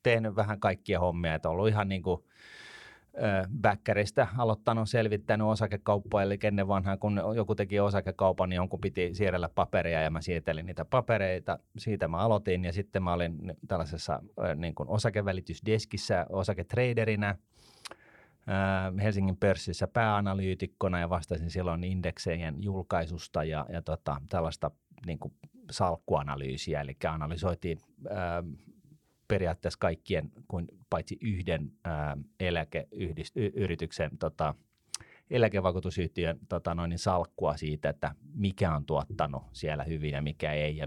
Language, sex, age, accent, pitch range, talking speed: Finnish, male, 30-49, native, 85-105 Hz, 115 wpm